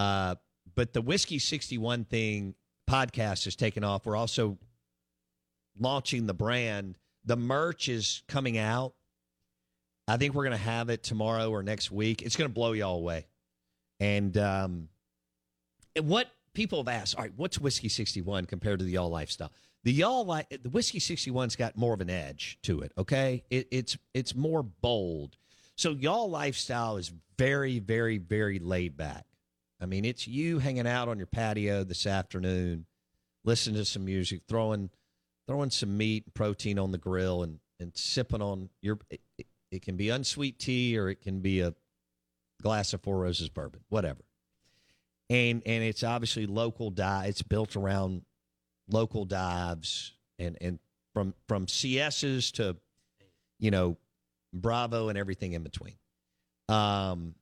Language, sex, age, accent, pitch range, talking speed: English, male, 50-69, American, 85-120 Hz, 160 wpm